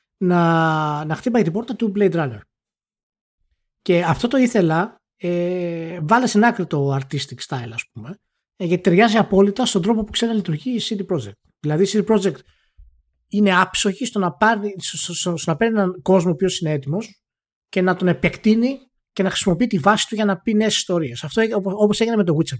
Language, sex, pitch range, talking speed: Greek, male, 155-220 Hz, 185 wpm